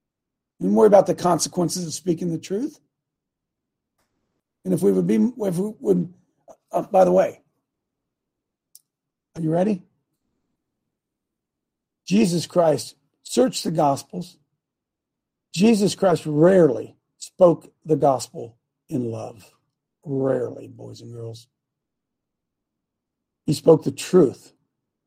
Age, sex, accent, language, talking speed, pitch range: 50-69, male, American, English, 110 wpm, 155-215 Hz